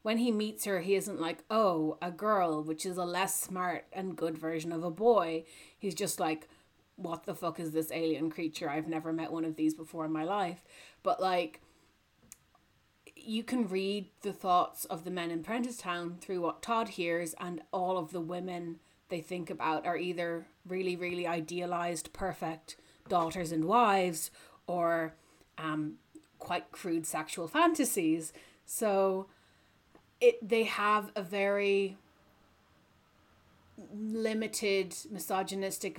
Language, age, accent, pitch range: English, 30-49, Irish, 165-195 Hz